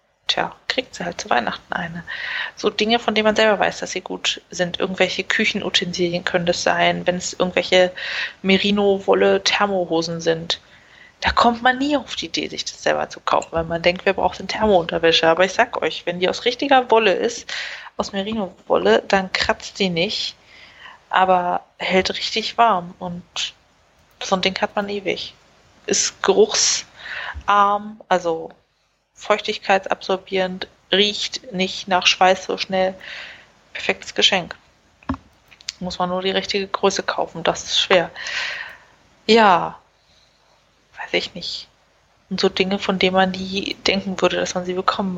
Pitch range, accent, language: 180-220 Hz, German, German